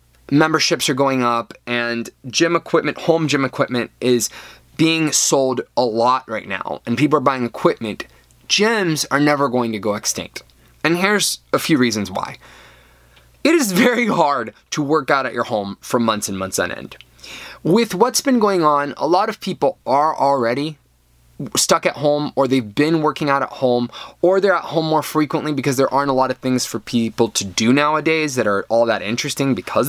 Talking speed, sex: 195 wpm, male